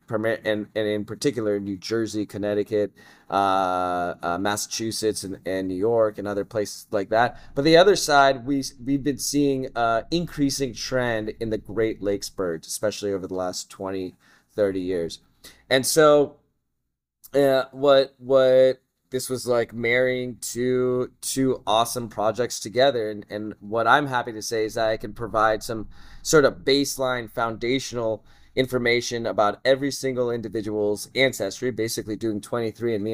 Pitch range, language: 105-130 Hz, English